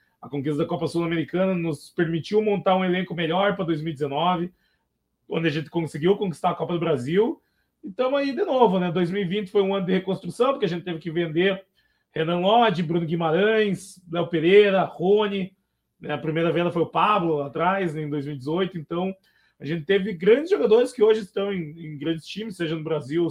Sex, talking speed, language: male, 190 wpm, Portuguese